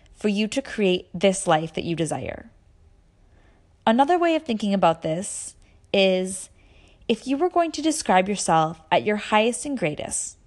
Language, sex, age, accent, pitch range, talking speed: English, female, 10-29, American, 160-245 Hz, 160 wpm